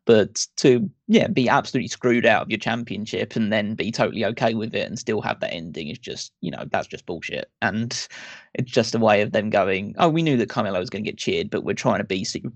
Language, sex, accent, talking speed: English, male, British, 255 wpm